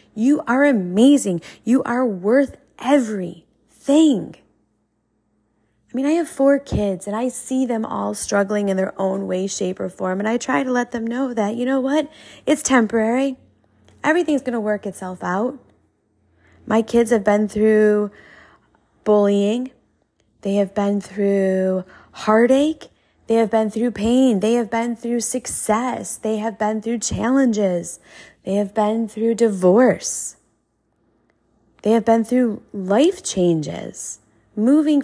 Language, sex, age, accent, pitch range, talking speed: English, female, 20-39, American, 190-245 Hz, 140 wpm